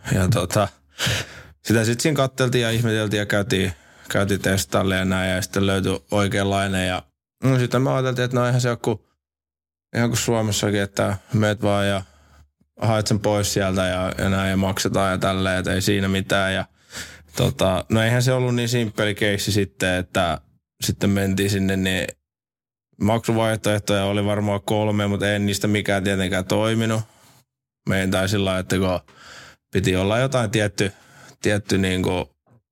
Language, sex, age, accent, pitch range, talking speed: Finnish, male, 20-39, native, 95-110 Hz, 150 wpm